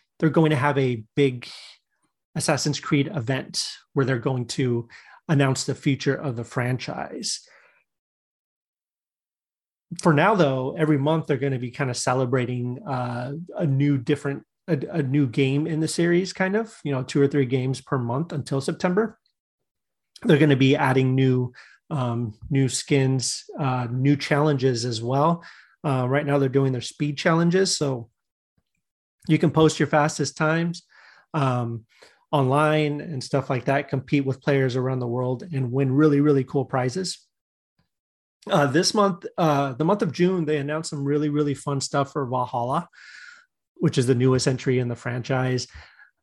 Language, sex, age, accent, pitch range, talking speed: English, male, 30-49, American, 130-155 Hz, 165 wpm